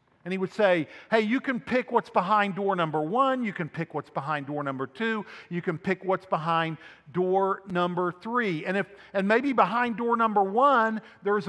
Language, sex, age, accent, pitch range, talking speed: English, male, 50-69, American, 180-235 Hz, 200 wpm